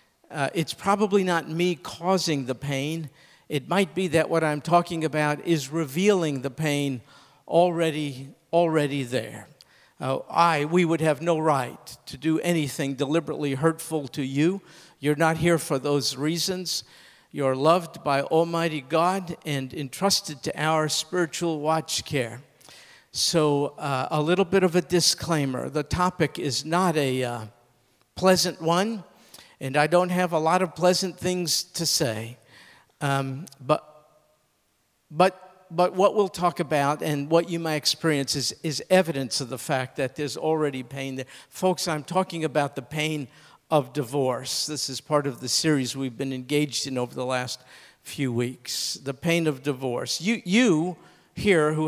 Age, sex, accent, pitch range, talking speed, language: 50-69, male, American, 140-170 Hz, 155 wpm, English